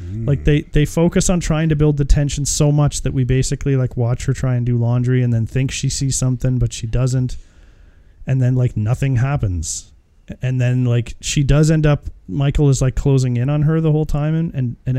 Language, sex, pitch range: English, male, 110-140 Hz